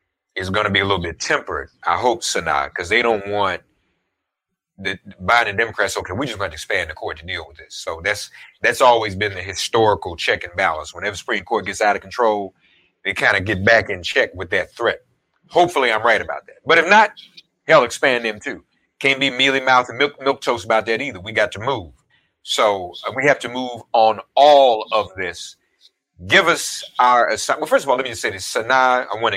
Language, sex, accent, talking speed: English, male, American, 225 wpm